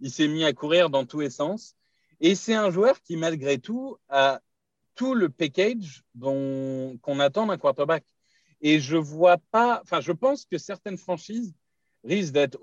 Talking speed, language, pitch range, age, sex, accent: 175 wpm, French, 135-195 Hz, 40-59, male, French